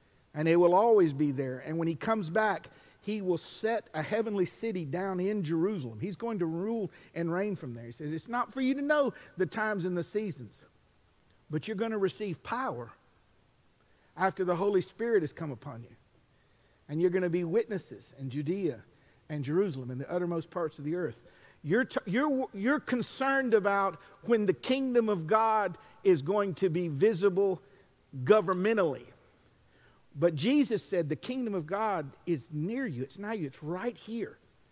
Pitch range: 150-215 Hz